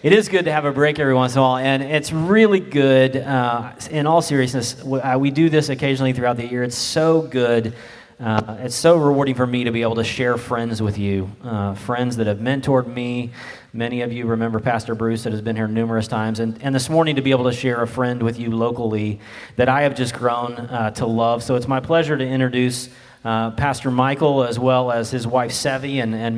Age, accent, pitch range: 30-49, American, 120-145 Hz